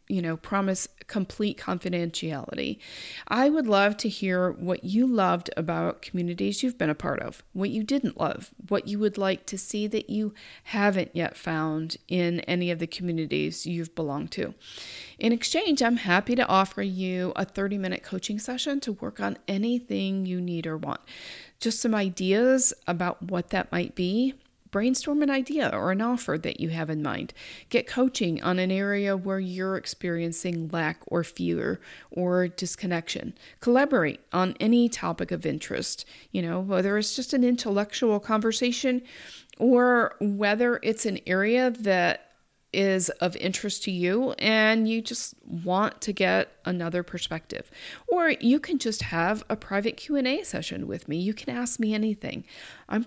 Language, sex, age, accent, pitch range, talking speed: English, female, 40-59, American, 180-235 Hz, 165 wpm